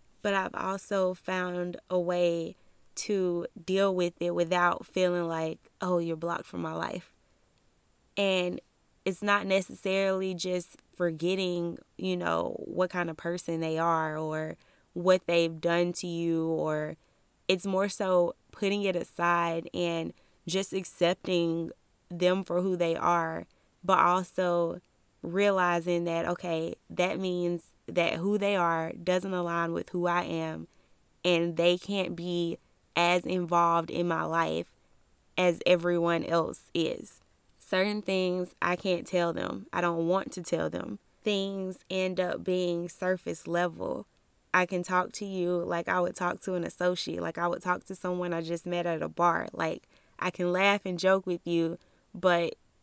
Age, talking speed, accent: 20-39, 155 wpm, American